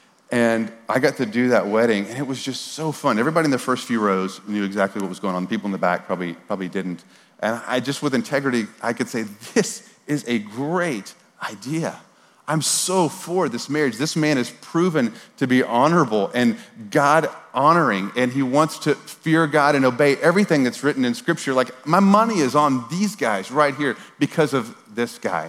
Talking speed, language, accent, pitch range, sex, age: 205 wpm, English, American, 110-145 Hz, male, 40-59